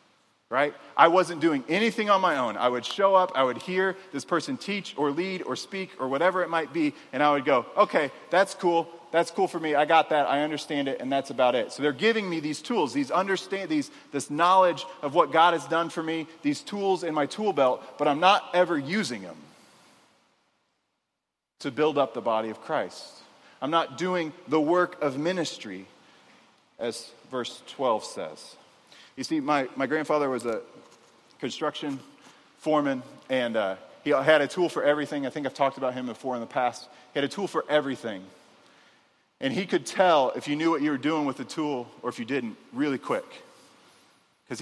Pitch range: 135-185 Hz